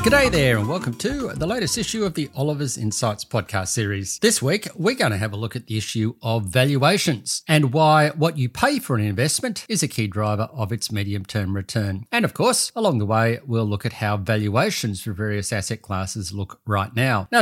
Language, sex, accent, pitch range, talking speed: English, male, Australian, 110-150 Hz, 215 wpm